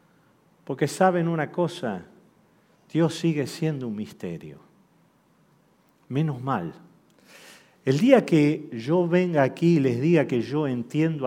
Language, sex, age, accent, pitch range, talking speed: Spanish, male, 50-69, Argentinian, 140-180 Hz, 120 wpm